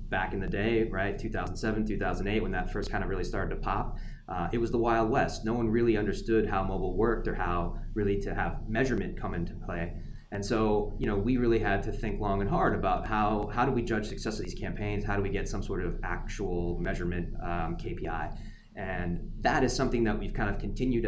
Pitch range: 95-115 Hz